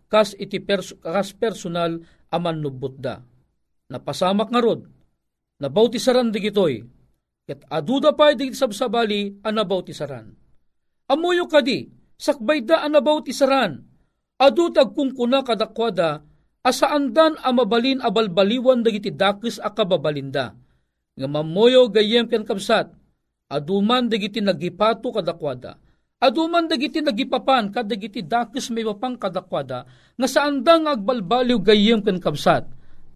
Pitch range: 145-235 Hz